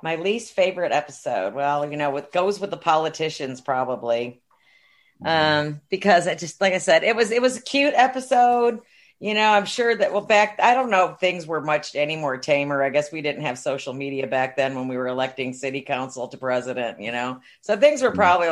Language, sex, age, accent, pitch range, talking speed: English, female, 40-59, American, 135-190 Hz, 215 wpm